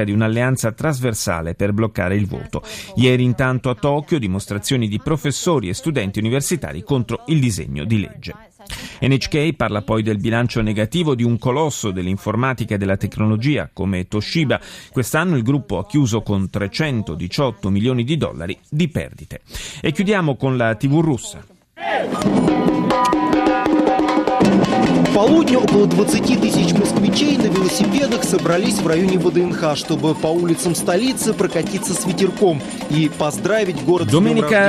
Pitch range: 110-160 Hz